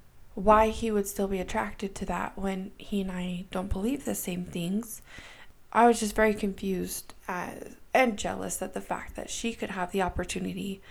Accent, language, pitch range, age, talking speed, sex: American, English, 185-235 Hz, 20-39, 180 wpm, female